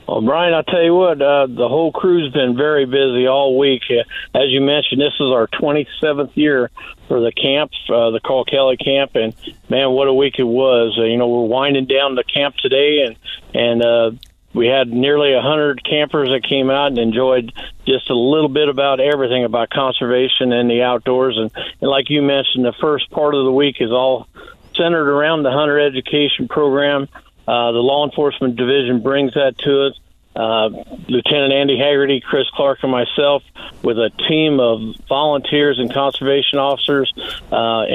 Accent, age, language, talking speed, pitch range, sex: American, 50-69, English, 185 wpm, 125-145 Hz, male